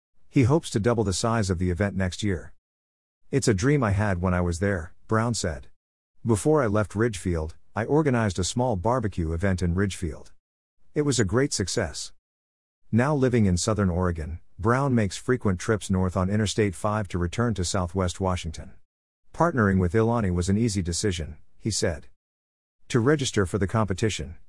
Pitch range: 90-115 Hz